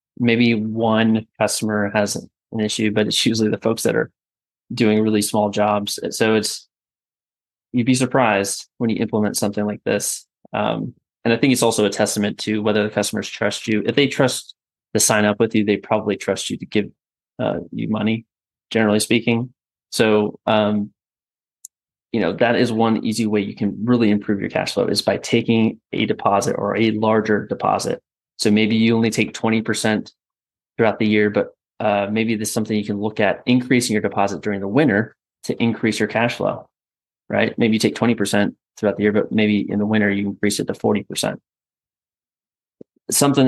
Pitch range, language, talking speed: 105-115 Hz, English, 190 wpm